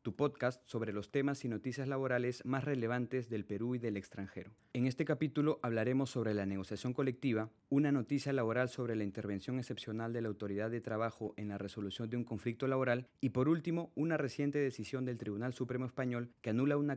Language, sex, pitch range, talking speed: Spanish, male, 110-135 Hz, 195 wpm